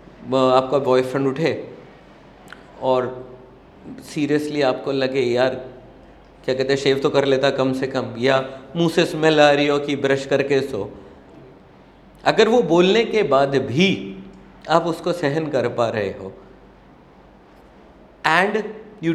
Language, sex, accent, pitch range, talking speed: Hindi, male, native, 130-205 Hz, 135 wpm